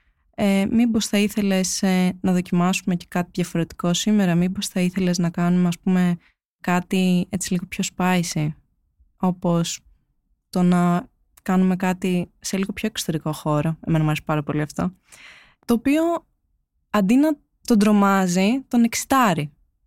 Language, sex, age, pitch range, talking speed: Greek, female, 20-39, 175-225 Hz, 140 wpm